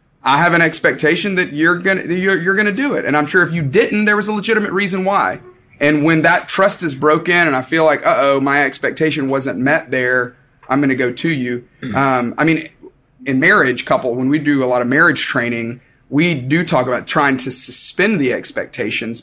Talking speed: 215 wpm